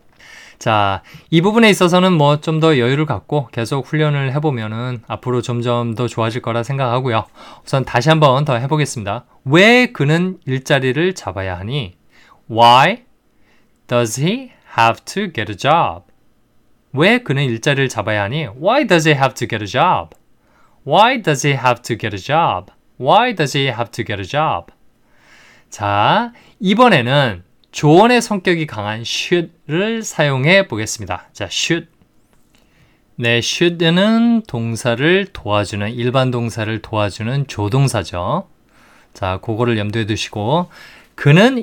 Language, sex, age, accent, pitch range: Korean, male, 20-39, native, 115-165 Hz